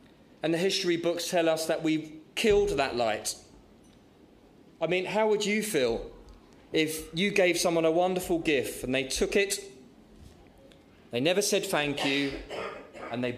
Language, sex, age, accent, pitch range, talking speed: English, male, 20-39, British, 135-175 Hz, 155 wpm